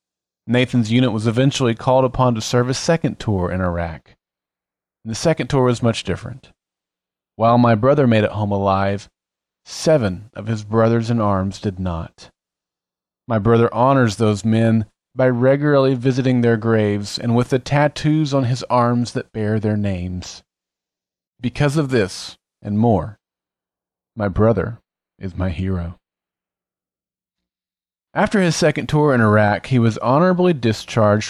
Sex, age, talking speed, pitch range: male, 30-49, 140 wpm, 100-135 Hz